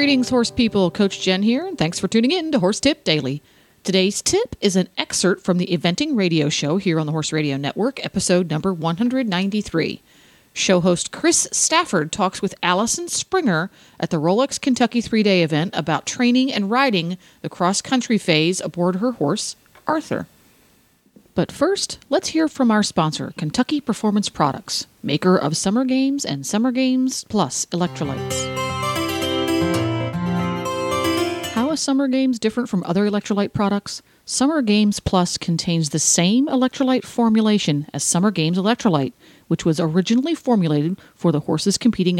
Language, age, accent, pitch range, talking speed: English, 40-59, American, 165-235 Hz, 150 wpm